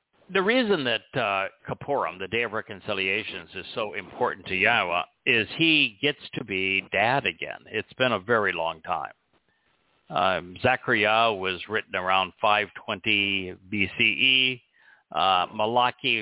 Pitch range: 95-120 Hz